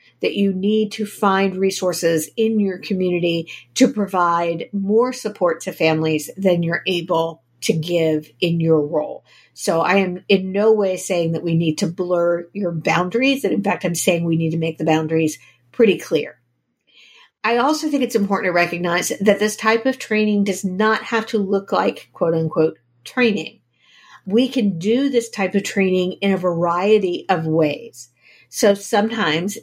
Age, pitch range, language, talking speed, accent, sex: 50-69, 175-215 Hz, English, 170 wpm, American, female